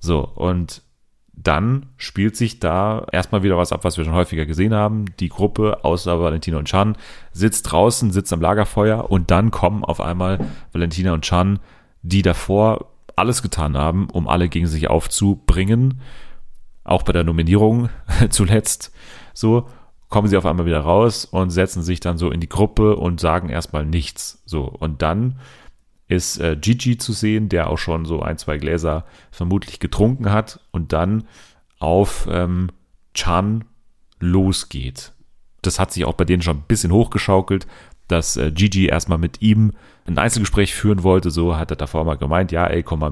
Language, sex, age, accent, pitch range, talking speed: German, male, 30-49, German, 85-105 Hz, 170 wpm